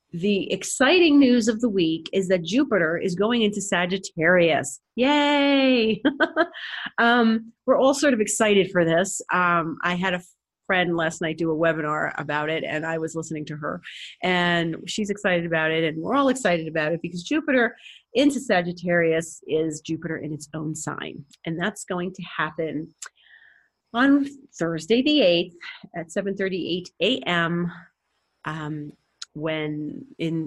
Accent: American